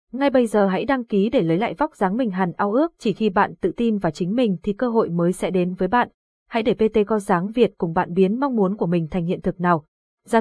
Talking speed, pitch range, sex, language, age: 280 wpm, 185-240 Hz, female, Vietnamese, 20-39